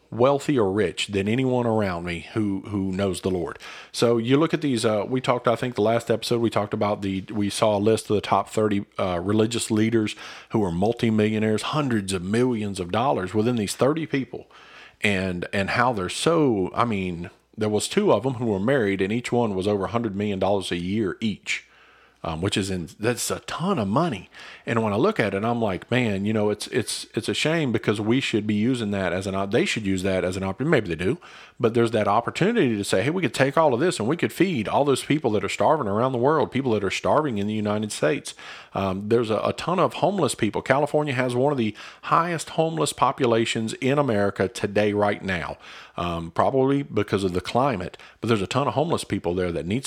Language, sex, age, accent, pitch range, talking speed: English, male, 40-59, American, 95-120 Hz, 235 wpm